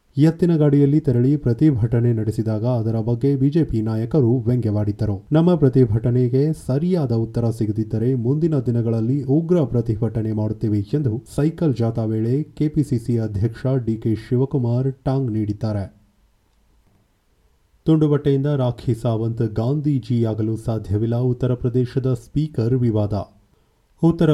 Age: 30-49